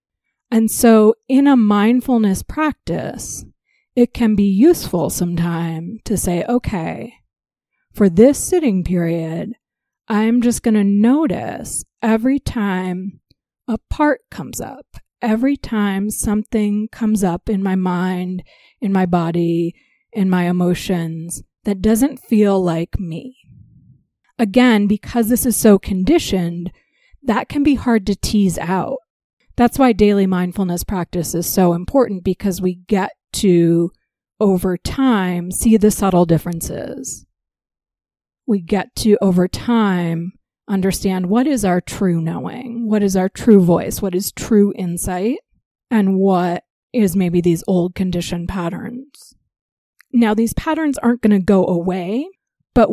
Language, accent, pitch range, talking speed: English, American, 185-235 Hz, 130 wpm